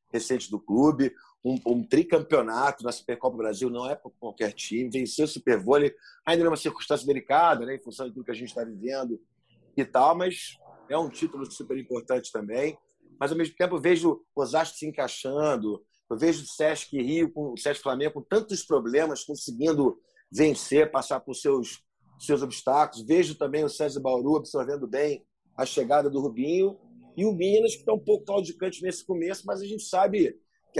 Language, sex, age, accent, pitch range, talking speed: Portuguese, male, 40-59, Brazilian, 135-195 Hz, 185 wpm